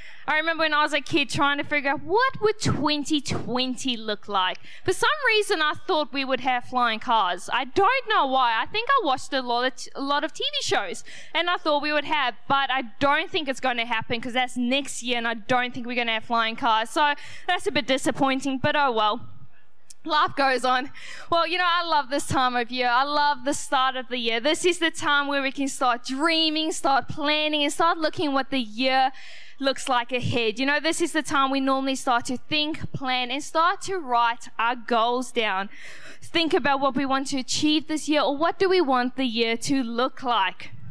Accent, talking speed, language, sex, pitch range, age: Australian, 230 wpm, English, female, 250-305 Hz, 10-29